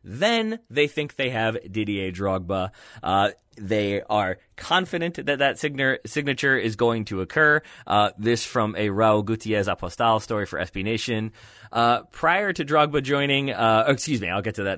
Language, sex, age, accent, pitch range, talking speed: English, male, 20-39, American, 105-140 Hz, 165 wpm